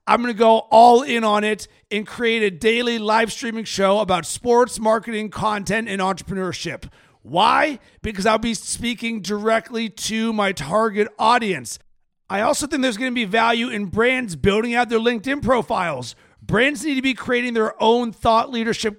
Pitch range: 215-245 Hz